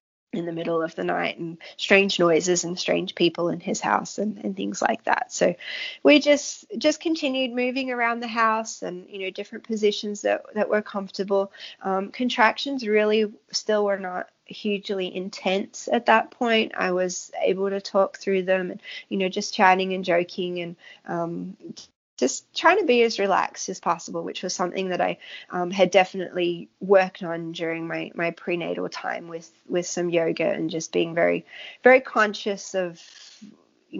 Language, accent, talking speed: English, Australian, 175 wpm